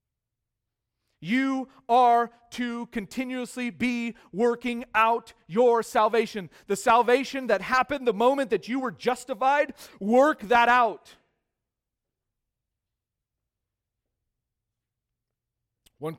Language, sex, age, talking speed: English, male, 40-59, 85 wpm